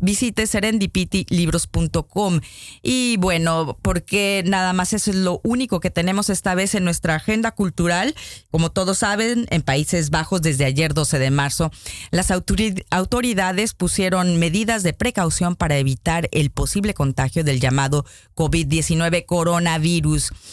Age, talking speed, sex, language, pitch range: 30-49, 130 wpm, female, Polish, 160-210 Hz